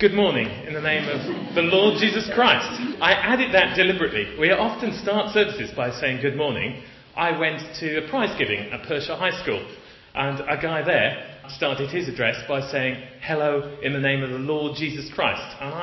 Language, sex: English, male